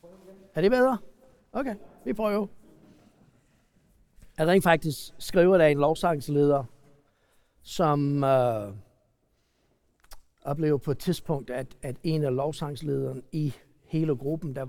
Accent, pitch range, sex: native, 135-200 Hz, male